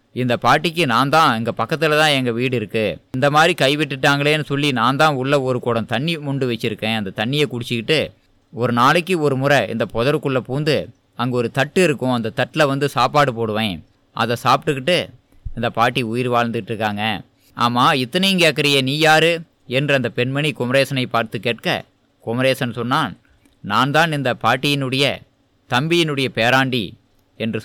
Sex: male